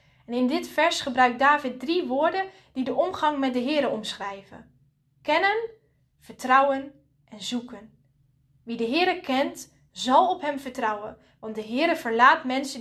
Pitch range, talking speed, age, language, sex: 215-285 Hz, 150 wpm, 10-29, Dutch, female